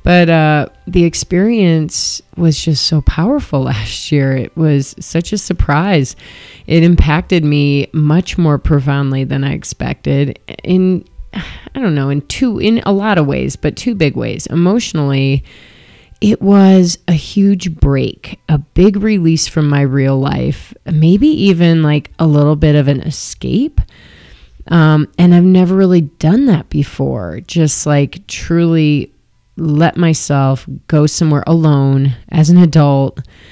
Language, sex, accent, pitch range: English, female, American, 145-185 Hz